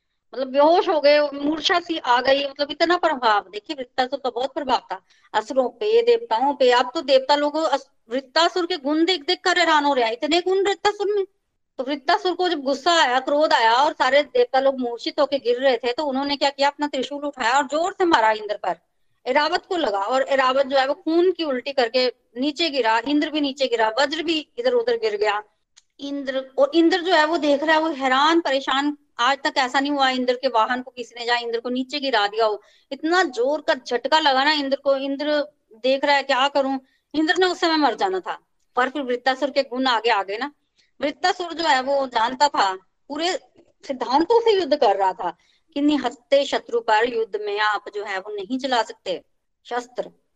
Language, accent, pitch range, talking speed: Hindi, native, 255-320 Hz, 185 wpm